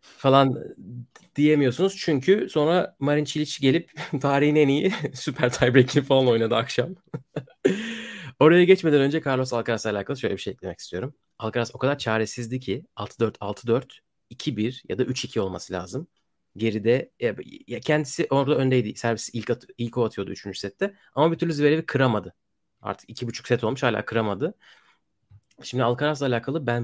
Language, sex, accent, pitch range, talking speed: Turkish, male, native, 115-150 Hz, 155 wpm